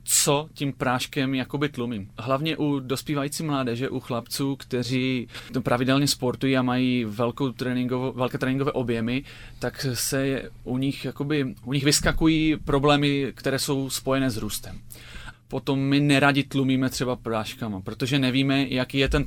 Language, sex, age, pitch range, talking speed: Czech, male, 30-49, 125-145 Hz, 140 wpm